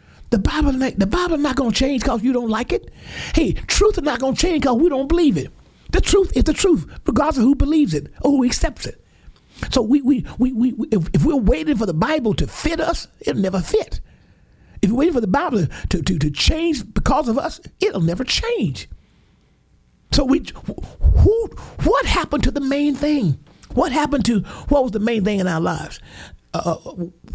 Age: 50-69